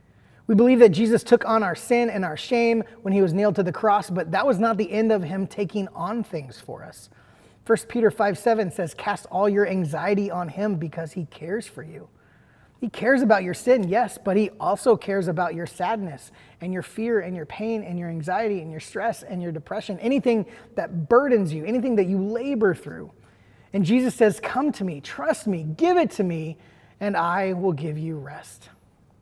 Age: 20-39